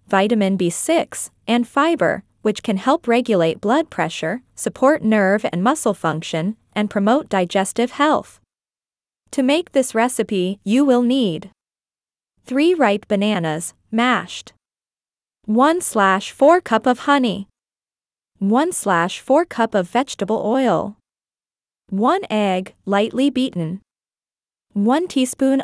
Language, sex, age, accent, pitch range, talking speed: English, female, 20-39, American, 200-270 Hz, 105 wpm